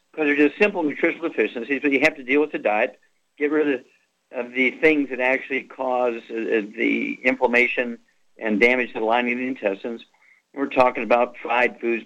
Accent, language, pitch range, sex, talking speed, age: American, English, 125-145 Hz, male, 205 wpm, 50-69